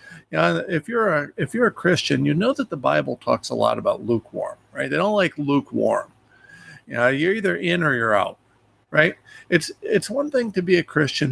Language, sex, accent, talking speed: English, male, American, 215 wpm